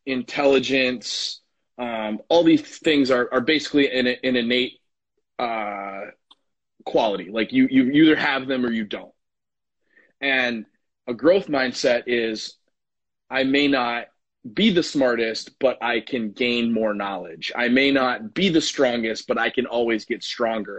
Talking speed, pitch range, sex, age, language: 145 wpm, 115-150 Hz, male, 30-49, English